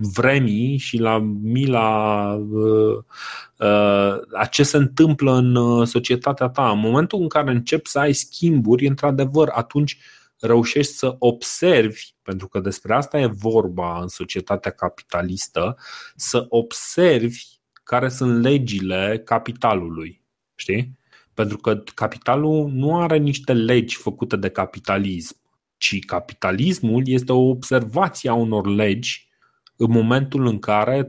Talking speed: 115 wpm